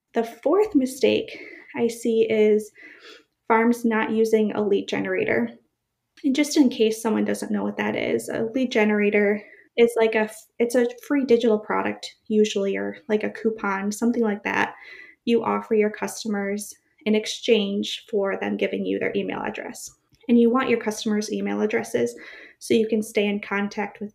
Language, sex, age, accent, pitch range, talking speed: English, female, 20-39, American, 205-235 Hz, 170 wpm